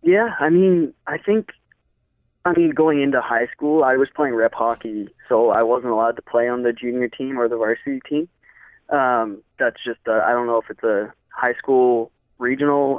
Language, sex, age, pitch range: English, male, 20-39, 115-145 Hz